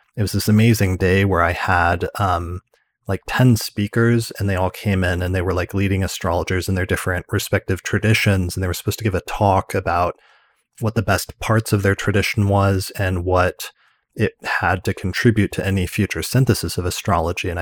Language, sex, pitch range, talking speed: English, male, 90-105 Hz, 200 wpm